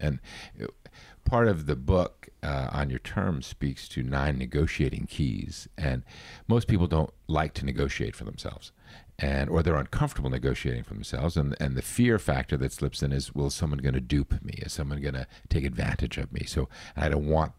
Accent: American